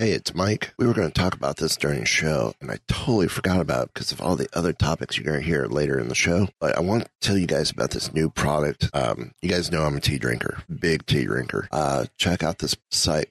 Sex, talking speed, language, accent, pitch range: male, 270 wpm, English, American, 80-95 Hz